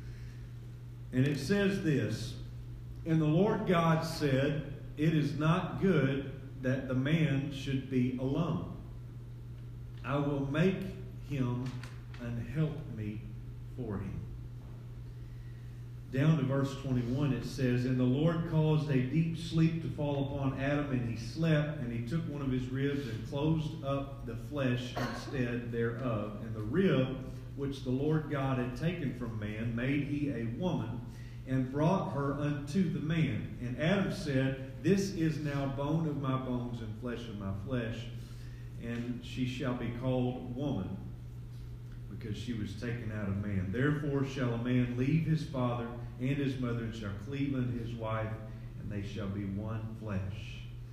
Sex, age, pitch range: male, 40-59, 120-145 Hz